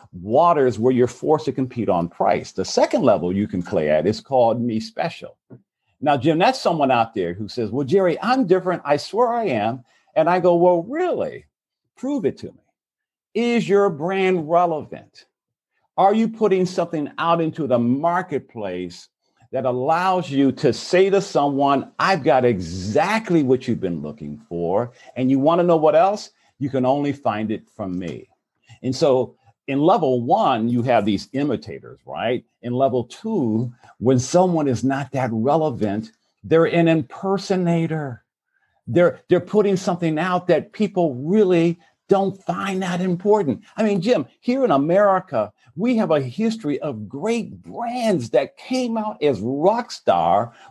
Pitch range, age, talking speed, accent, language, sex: 125-195 Hz, 50-69, 165 wpm, American, English, male